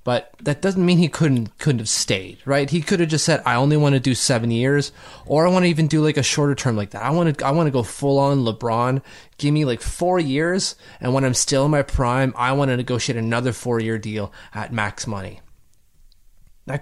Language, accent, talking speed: English, American, 240 wpm